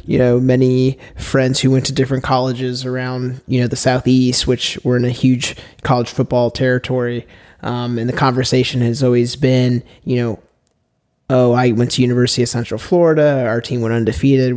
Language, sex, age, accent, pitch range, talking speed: English, male, 20-39, American, 115-125 Hz, 175 wpm